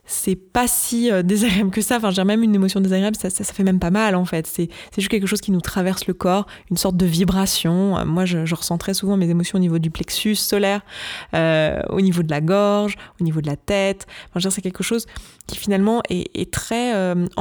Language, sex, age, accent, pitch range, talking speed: French, female, 20-39, French, 175-205 Hz, 250 wpm